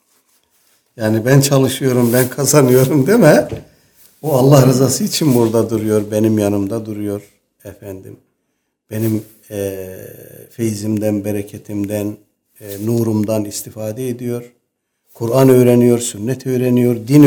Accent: native